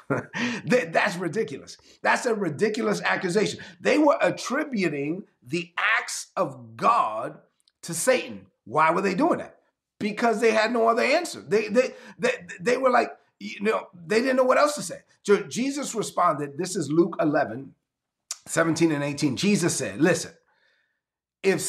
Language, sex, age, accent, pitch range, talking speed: English, male, 40-59, American, 160-230 Hz, 150 wpm